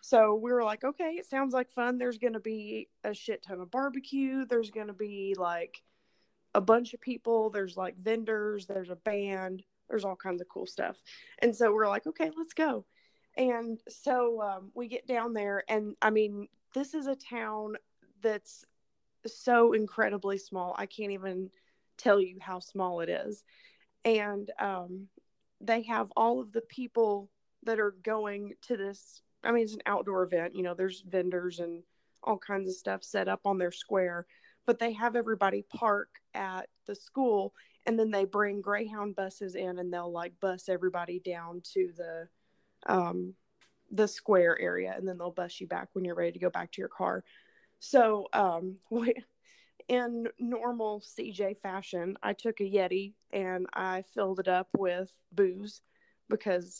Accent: American